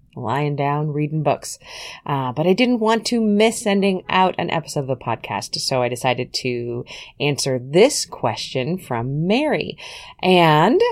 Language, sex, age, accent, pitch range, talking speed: English, female, 30-49, American, 130-195 Hz, 155 wpm